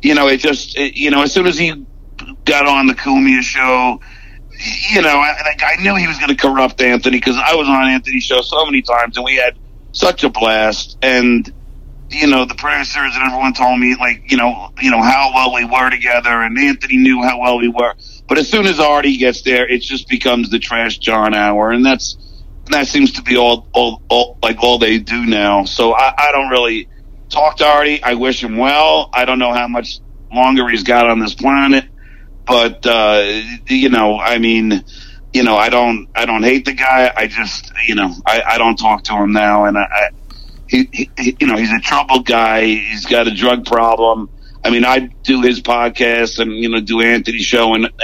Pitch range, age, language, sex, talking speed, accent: 115-135 Hz, 50-69, English, male, 215 wpm, American